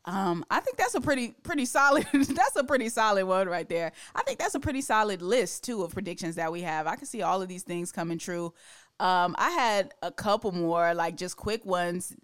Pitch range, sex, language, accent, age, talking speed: 170-200 Hz, female, English, American, 20-39, 230 wpm